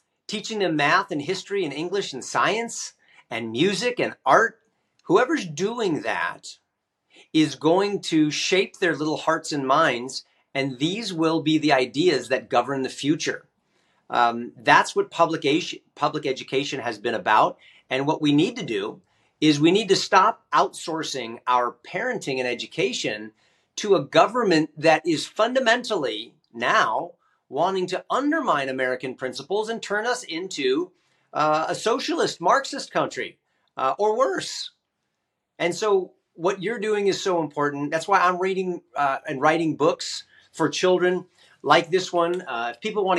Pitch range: 145-200 Hz